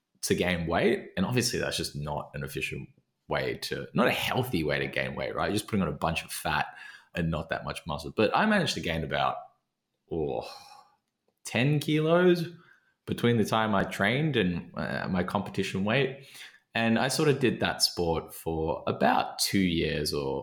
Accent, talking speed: Australian, 180 wpm